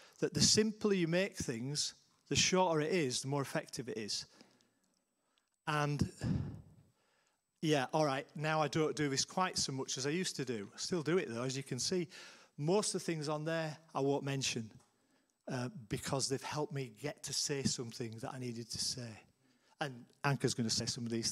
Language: English